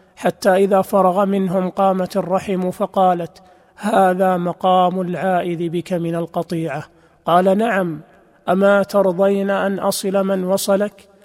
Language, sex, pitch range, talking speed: Arabic, male, 175-190 Hz, 110 wpm